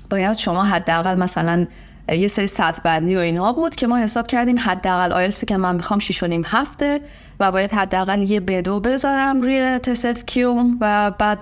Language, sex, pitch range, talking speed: Persian, female, 170-220 Hz, 175 wpm